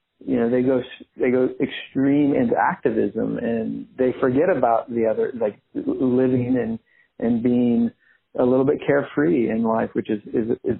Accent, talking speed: American, 165 wpm